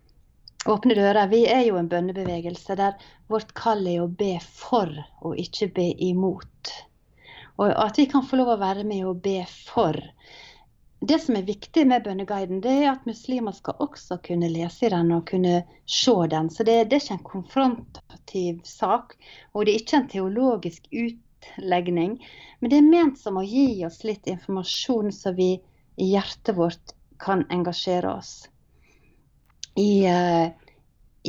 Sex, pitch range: female, 175-225 Hz